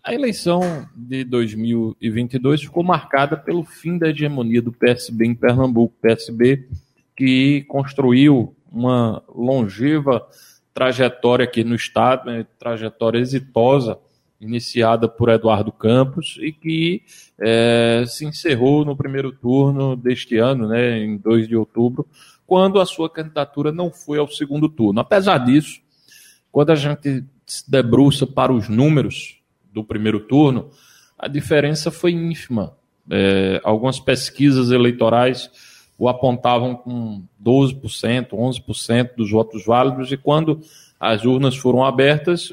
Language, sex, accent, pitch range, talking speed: Portuguese, male, Brazilian, 115-145 Hz, 125 wpm